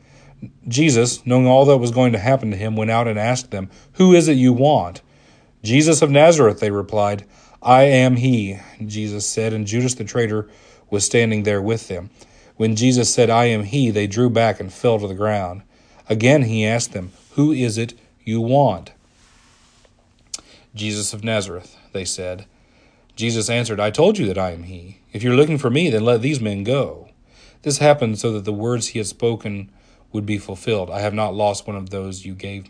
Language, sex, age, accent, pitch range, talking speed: English, male, 40-59, American, 105-125 Hz, 200 wpm